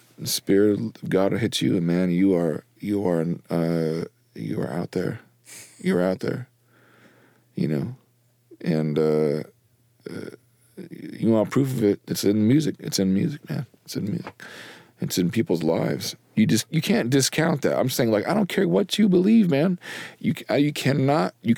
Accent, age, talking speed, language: American, 40-59, 175 wpm, English